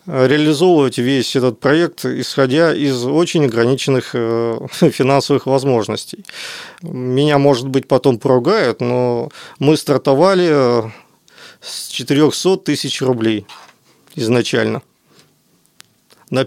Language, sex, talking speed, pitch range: Russian, male, 90 wpm, 130-160 Hz